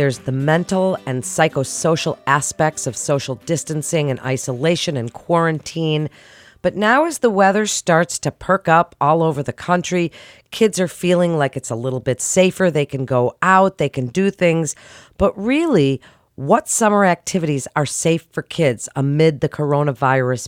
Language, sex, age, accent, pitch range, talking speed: English, female, 40-59, American, 140-185 Hz, 160 wpm